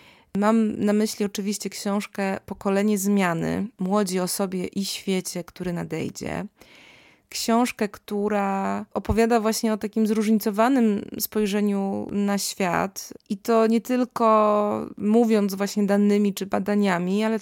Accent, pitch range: native, 195-220 Hz